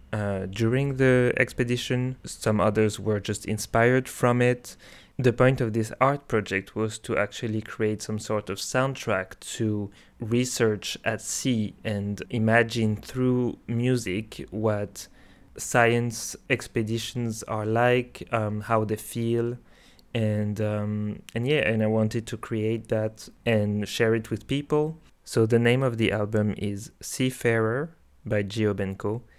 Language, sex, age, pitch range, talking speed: English, male, 20-39, 105-120 Hz, 140 wpm